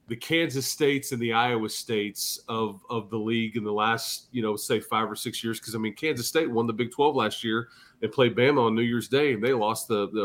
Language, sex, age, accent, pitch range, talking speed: English, male, 30-49, American, 110-140 Hz, 260 wpm